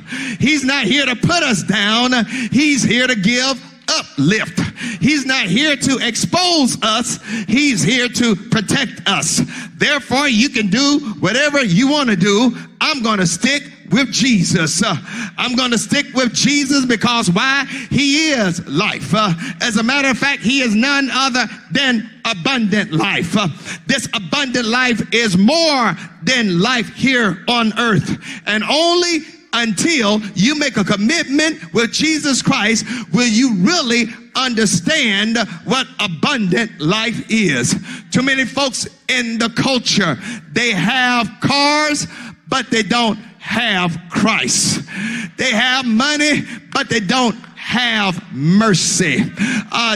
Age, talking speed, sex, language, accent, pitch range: 50-69, 130 wpm, male, English, American, 210-260 Hz